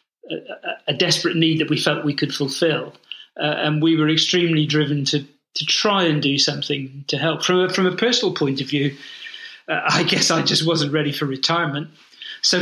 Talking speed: 200 wpm